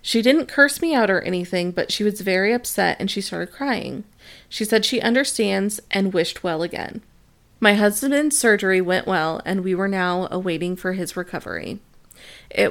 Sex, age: female, 30-49